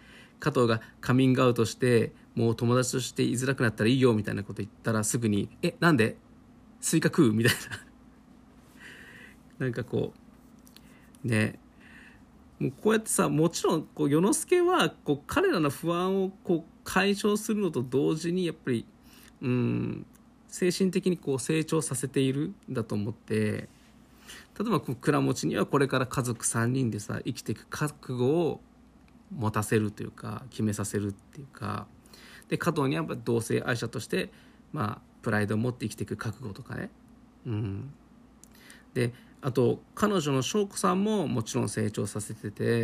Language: Japanese